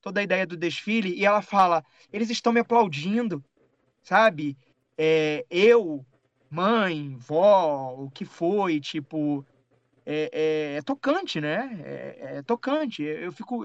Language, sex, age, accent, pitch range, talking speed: Portuguese, male, 20-39, Brazilian, 145-205 Hz, 125 wpm